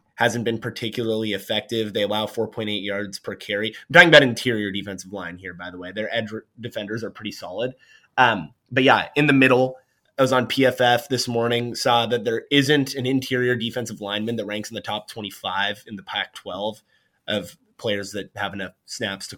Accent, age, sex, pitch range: American, 20-39, male, 110-125 Hz